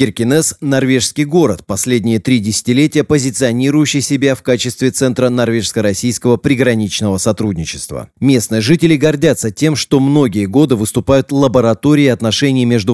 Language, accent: Russian, native